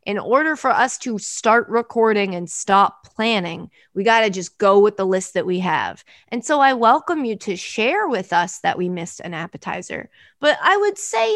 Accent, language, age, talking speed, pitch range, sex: American, English, 20-39, 200 wpm, 195-305 Hz, female